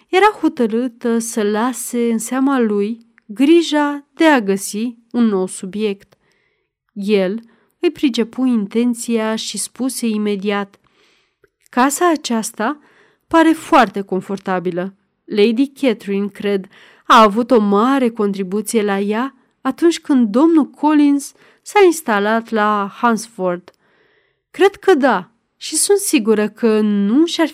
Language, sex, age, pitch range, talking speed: Romanian, female, 30-49, 210-270 Hz, 115 wpm